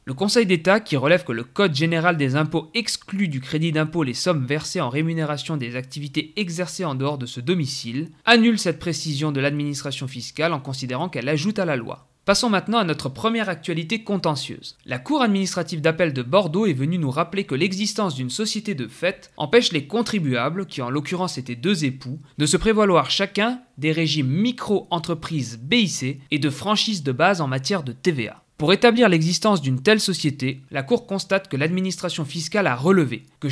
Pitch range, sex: 140-190 Hz, male